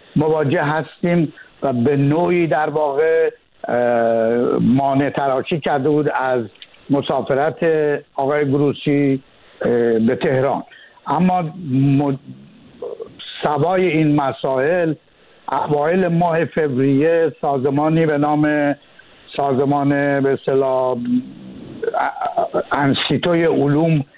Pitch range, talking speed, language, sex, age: 140-175 Hz, 70 wpm, Persian, male, 60-79